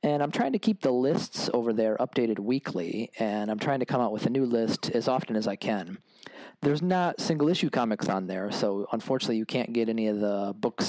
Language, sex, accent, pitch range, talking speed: English, male, American, 110-140 Hz, 230 wpm